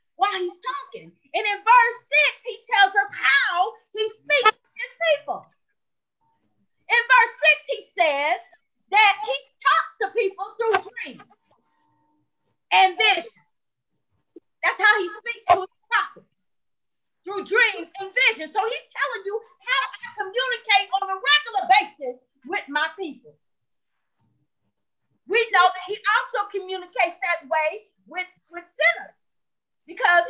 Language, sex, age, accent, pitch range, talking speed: English, female, 30-49, American, 310-425 Hz, 135 wpm